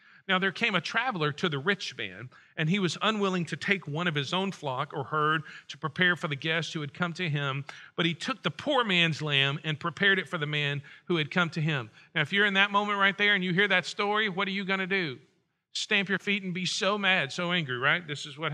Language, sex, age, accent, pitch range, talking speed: English, male, 40-59, American, 145-195 Hz, 265 wpm